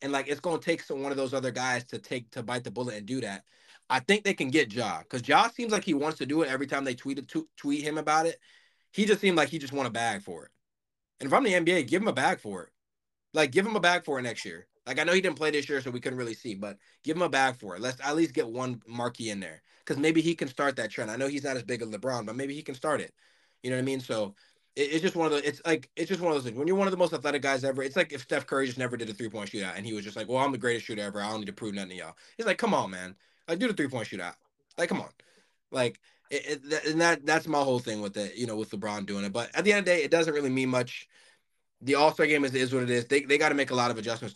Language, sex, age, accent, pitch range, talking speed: English, male, 20-39, American, 120-155 Hz, 330 wpm